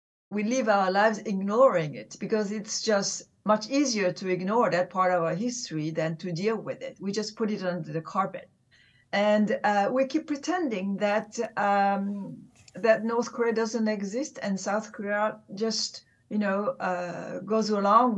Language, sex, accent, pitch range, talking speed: English, female, French, 170-215 Hz, 170 wpm